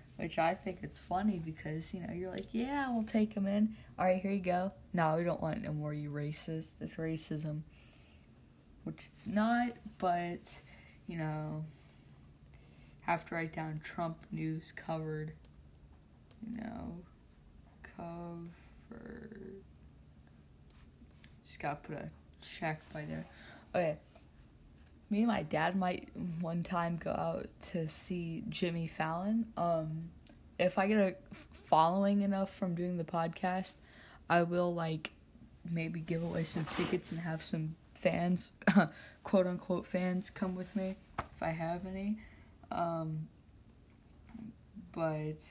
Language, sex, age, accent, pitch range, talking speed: English, female, 20-39, American, 155-195 Hz, 135 wpm